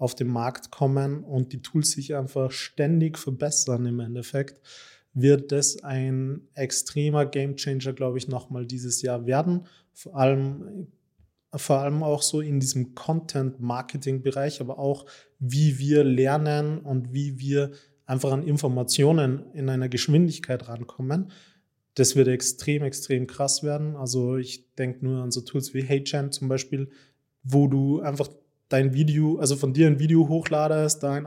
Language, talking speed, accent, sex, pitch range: German, 150 wpm, German, male, 130-150 Hz